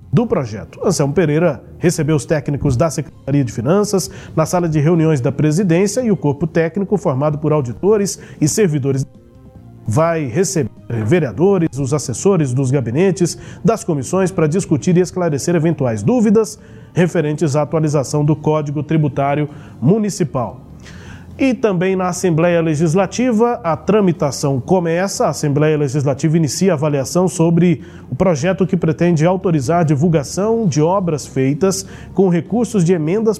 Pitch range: 150-190 Hz